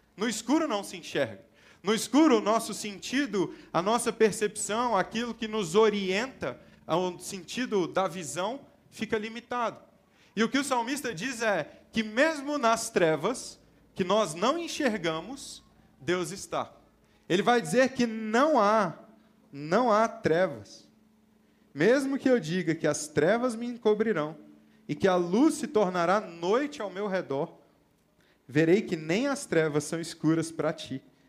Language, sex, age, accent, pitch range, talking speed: Portuguese, male, 30-49, Brazilian, 185-250 Hz, 150 wpm